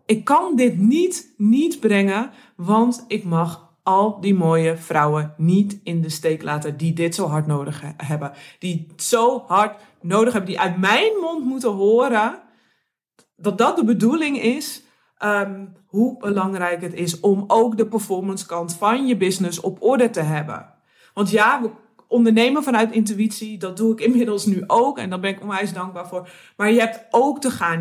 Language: Dutch